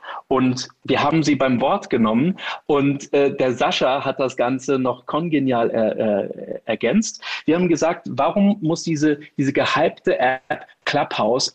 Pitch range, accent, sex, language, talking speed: 130-165 Hz, German, male, German, 145 wpm